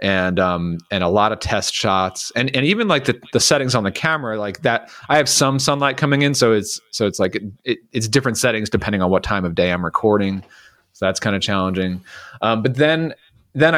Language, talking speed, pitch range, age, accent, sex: English, 230 wpm, 95-120 Hz, 30-49, American, male